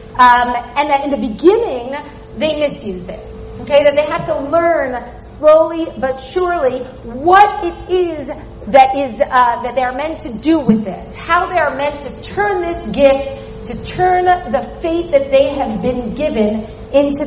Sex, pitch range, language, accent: female, 245-330 Hz, English, American